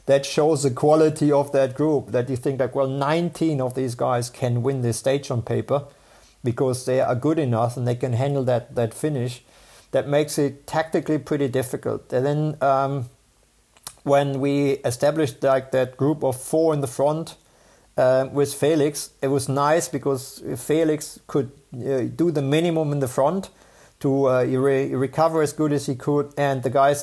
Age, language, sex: 50-69, English, male